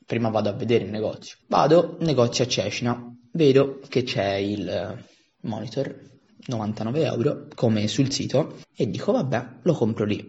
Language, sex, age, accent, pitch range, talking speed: Italian, male, 20-39, native, 110-135 Hz, 155 wpm